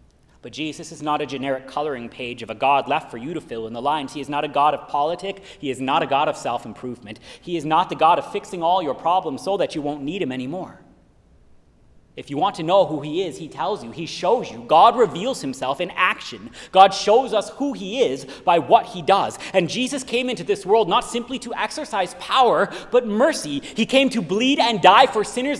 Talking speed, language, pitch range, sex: 235 wpm, English, 145-230 Hz, male